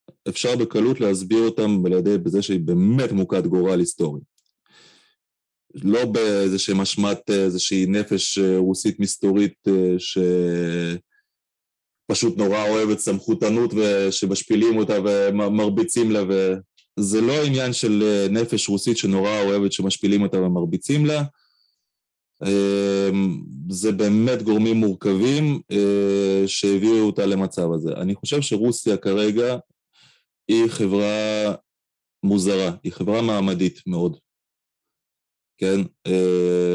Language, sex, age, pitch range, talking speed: Hebrew, male, 20-39, 95-105 Hz, 95 wpm